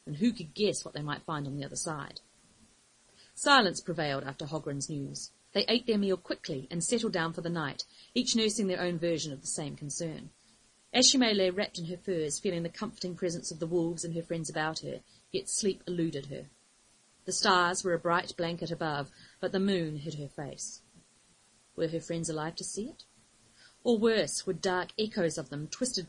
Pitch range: 155-195 Hz